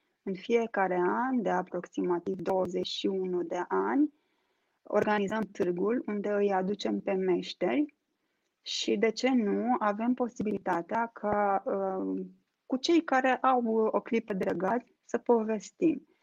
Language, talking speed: Romanian, 115 wpm